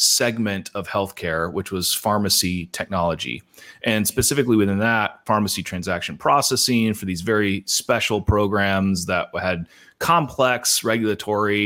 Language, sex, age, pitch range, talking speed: English, male, 30-49, 100-120 Hz, 120 wpm